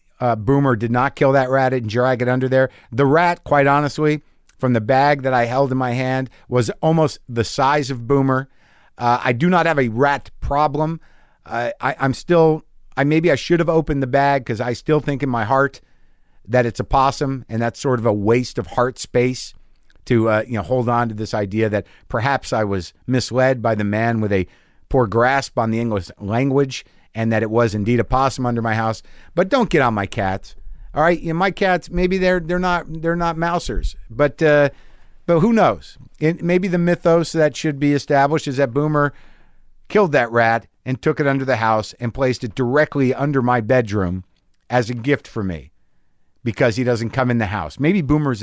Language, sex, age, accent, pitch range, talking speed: English, male, 50-69, American, 115-150 Hz, 210 wpm